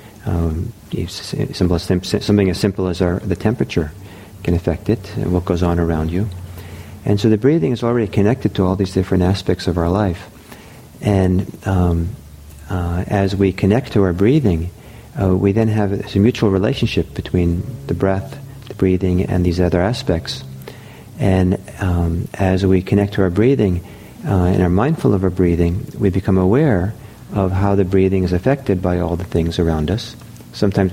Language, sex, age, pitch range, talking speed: English, male, 50-69, 90-105 Hz, 170 wpm